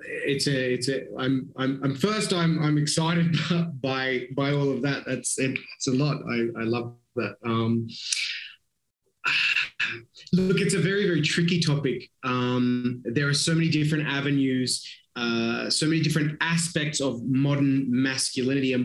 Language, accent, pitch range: English, Australian, 125-150 Hz